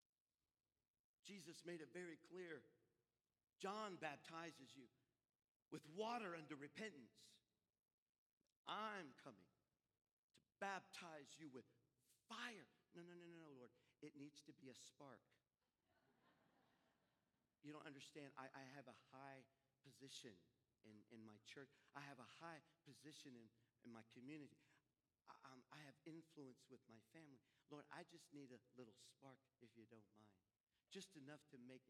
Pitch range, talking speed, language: 115-150 Hz, 140 wpm, English